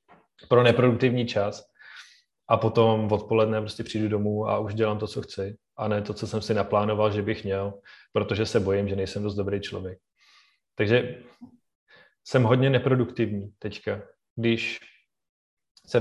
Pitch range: 105-120 Hz